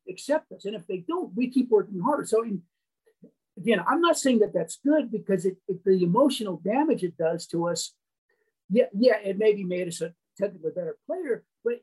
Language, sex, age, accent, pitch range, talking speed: English, male, 50-69, American, 180-235 Hz, 205 wpm